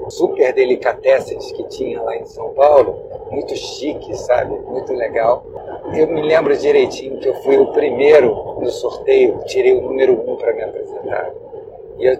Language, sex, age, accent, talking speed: Portuguese, male, 50-69, Brazilian, 160 wpm